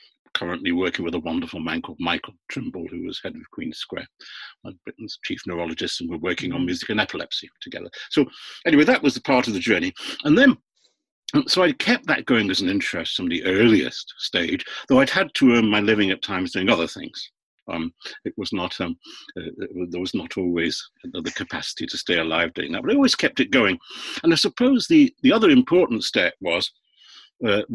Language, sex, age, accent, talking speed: English, male, 50-69, British, 210 wpm